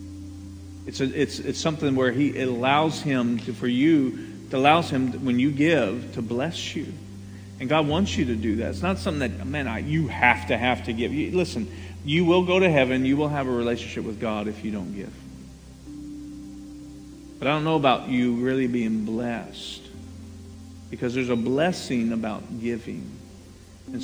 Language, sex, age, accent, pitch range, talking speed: English, male, 40-59, American, 100-150 Hz, 190 wpm